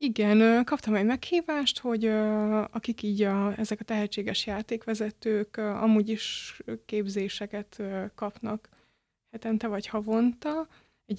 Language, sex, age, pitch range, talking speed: Hungarian, female, 20-39, 210-230 Hz, 100 wpm